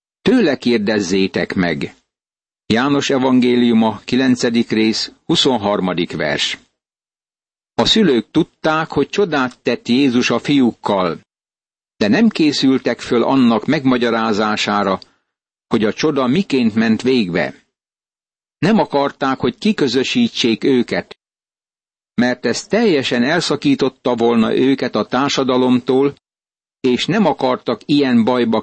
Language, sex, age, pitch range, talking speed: Hungarian, male, 60-79, 120-145 Hz, 100 wpm